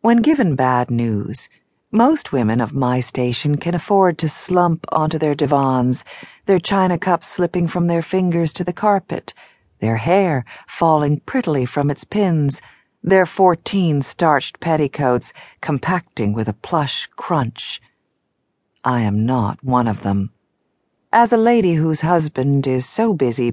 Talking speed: 145 wpm